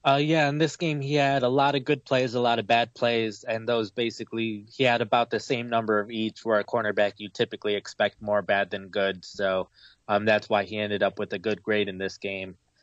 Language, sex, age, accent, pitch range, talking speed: English, male, 20-39, American, 100-115 Hz, 245 wpm